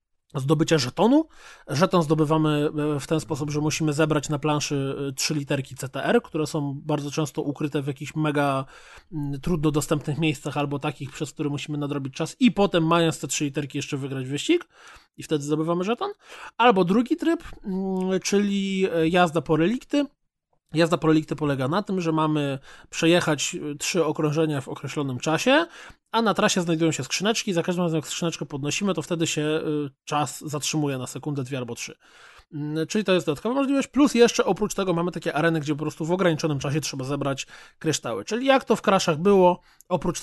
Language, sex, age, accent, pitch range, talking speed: Polish, male, 20-39, native, 145-175 Hz, 175 wpm